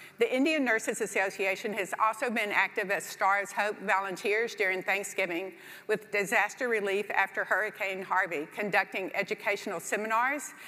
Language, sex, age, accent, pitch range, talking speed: English, female, 50-69, American, 195-235 Hz, 130 wpm